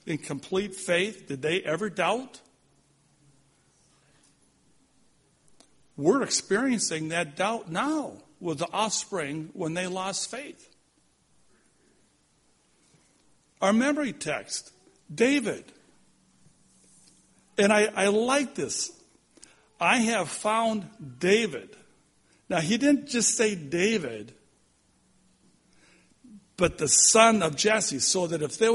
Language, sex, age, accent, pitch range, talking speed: English, male, 60-79, American, 155-220 Hz, 100 wpm